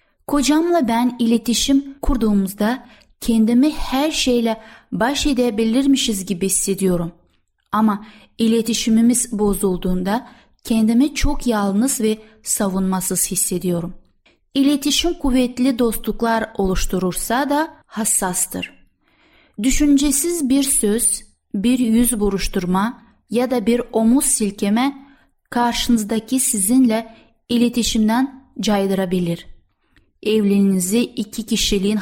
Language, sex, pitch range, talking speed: Turkish, female, 200-255 Hz, 80 wpm